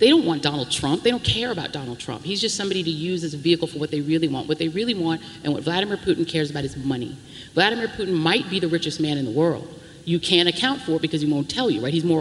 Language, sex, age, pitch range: English, female, 30-49, 155-210 Hz